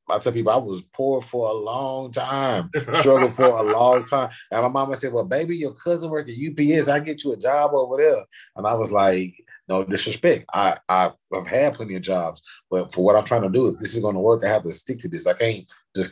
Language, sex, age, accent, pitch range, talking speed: English, male, 30-49, American, 90-125 Hz, 255 wpm